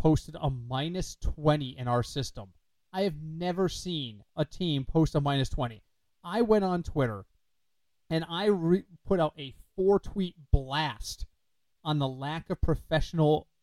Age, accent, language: 30-49, American, English